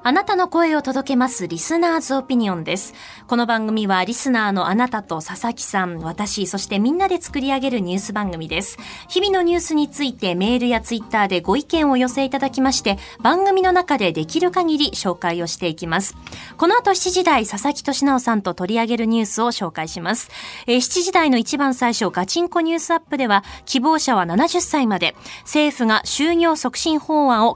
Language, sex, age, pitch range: Japanese, female, 20-39, 205-320 Hz